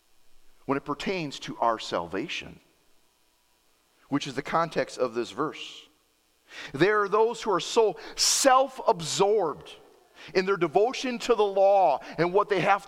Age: 40-59